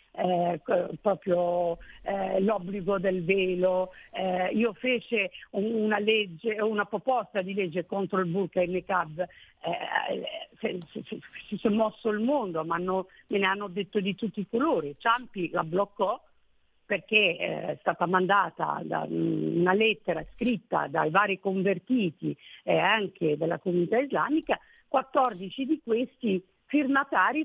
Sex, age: female, 50-69